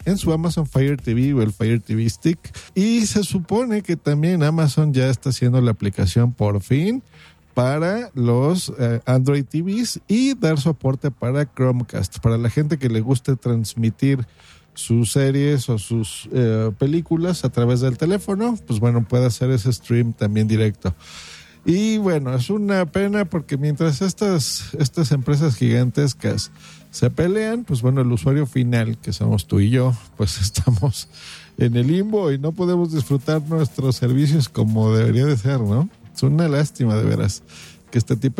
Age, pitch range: 50-69, 120-165 Hz